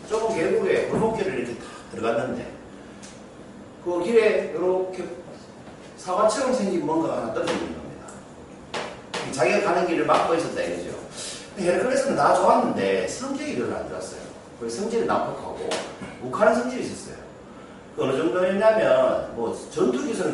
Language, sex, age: Korean, male, 40-59